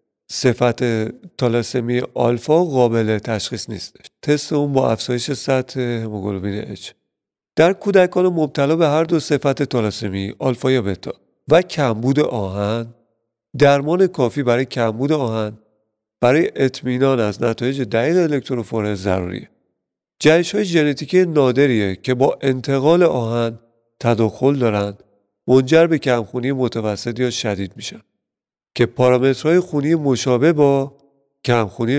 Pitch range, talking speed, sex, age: 115-140 Hz, 115 wpm, male, 40-59